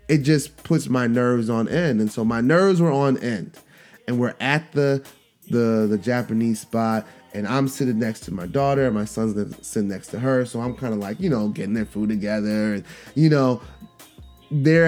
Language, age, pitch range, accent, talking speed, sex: English, 20-39, 115-145 Hz, American, 205 wpm, male